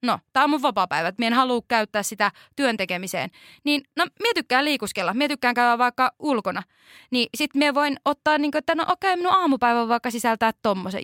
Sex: female